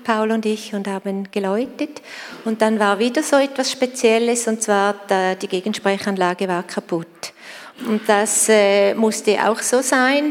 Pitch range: 200-235 Hz